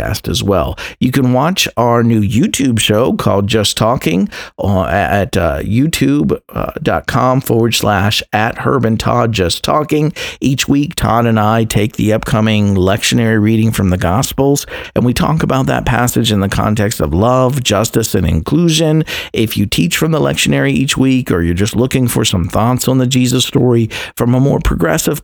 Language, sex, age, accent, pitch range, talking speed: English, male, 50-69, American, 95-130 Hz, 175 wpm